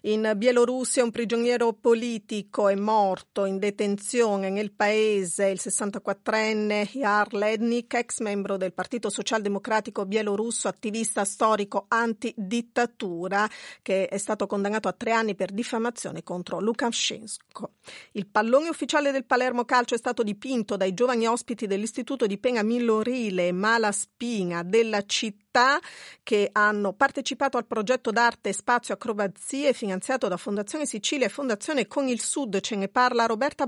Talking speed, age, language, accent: 135 wpm, 40-59, Italian, native